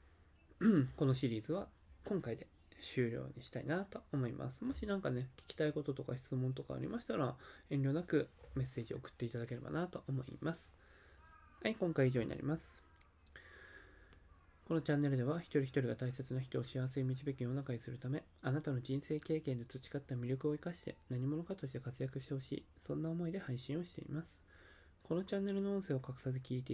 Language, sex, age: Japanese, male, 20-39